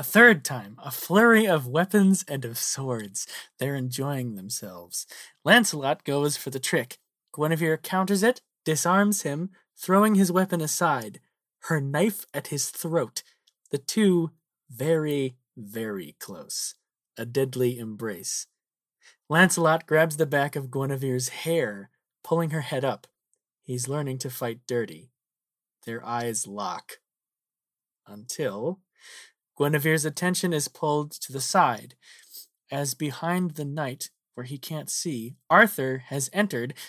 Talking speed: 125 wpm